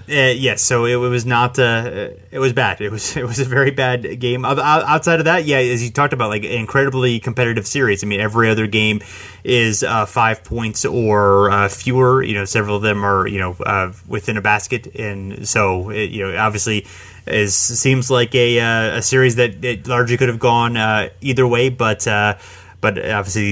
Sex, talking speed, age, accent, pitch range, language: male, 210 wpm, 30-49, American, 105-130 Hz, English